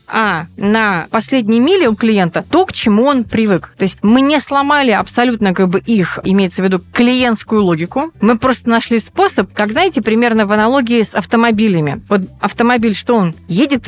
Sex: female